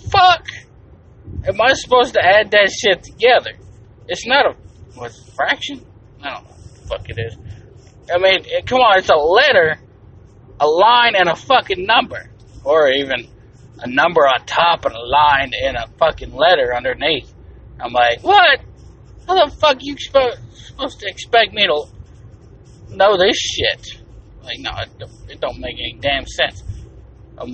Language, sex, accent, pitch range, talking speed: English, male, American, 105-145 Hz, 170 wpm